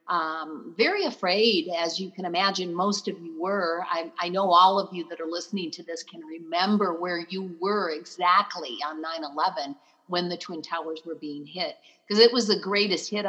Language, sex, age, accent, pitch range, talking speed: English, female, 50-69, American, 170-210 Hz, 200 wpm